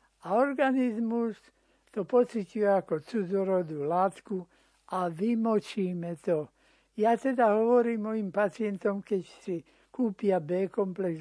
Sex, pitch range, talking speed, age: male, 180-215 Hz, 100 wpm, 60-79